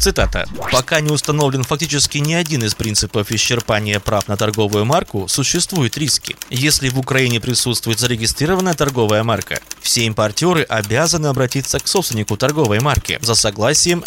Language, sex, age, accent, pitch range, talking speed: Russian, male, 20-39, native, 110-155 Hz, 140 wpm